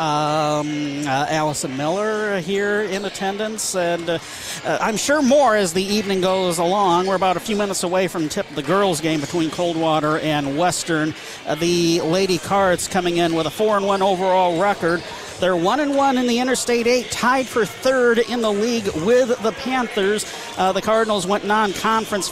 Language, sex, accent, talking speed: English, male, American, 175 wpm